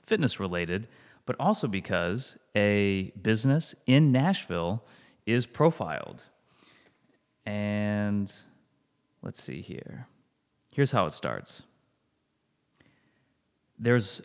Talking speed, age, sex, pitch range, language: 80 wpm, 30-49, male, 100-135 Hz, English